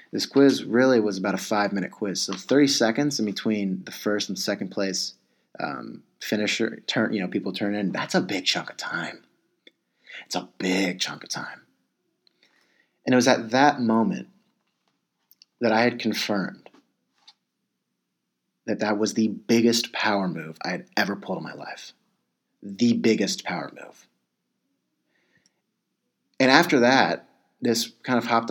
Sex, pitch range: male, 100-120 Hz